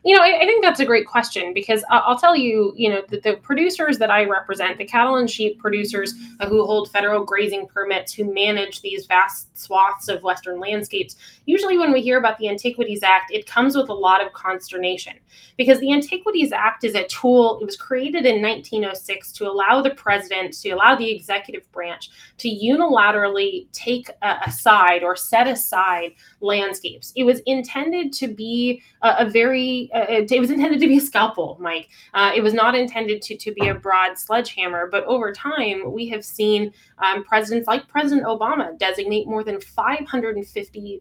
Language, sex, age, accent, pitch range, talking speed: English, female, 20-39, American, 200-255 Hz, 185 wpm